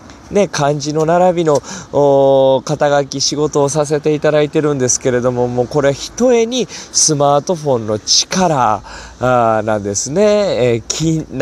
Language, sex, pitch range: Japanese, male, 125-155 Hz